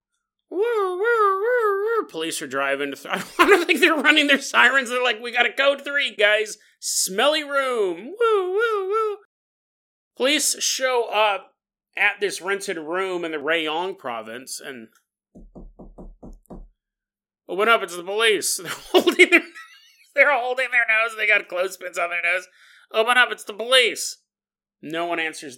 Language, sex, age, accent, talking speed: English, male, 30-49, American, 150 wpm